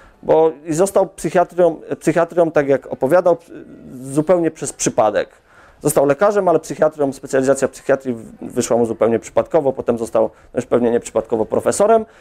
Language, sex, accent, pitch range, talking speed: Polish, male, native, 125-175 Hz, 130 wpm